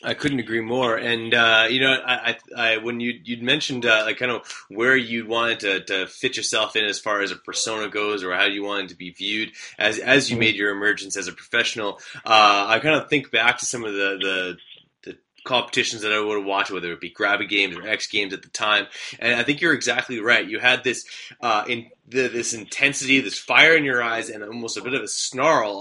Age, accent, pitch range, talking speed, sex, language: 30-49, American, 105-120 Hz, 240 wpm, male, English